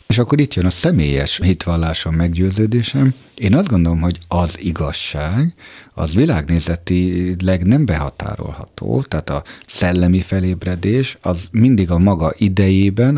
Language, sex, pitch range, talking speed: Hungarian, male, 80-105 Hz, 125 wpm